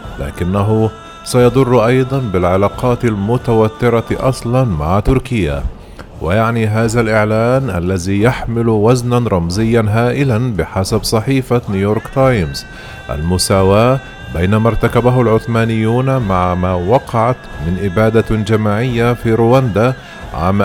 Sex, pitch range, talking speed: male, 100-125 Hz, 95 wpm